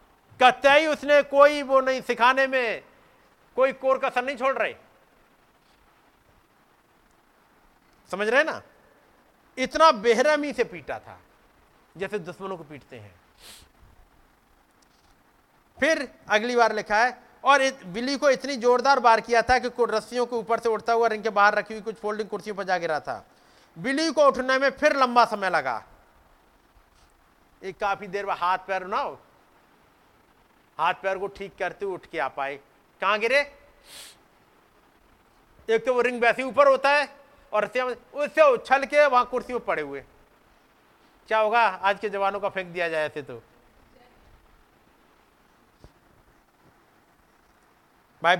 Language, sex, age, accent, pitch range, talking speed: Hindi, male, 50-69, native, 185-260 Hz, 140 wpm